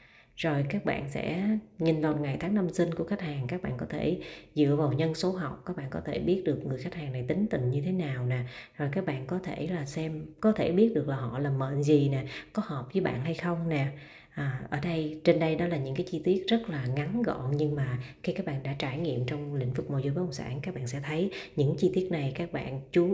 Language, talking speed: Vietnamese, 270 wpm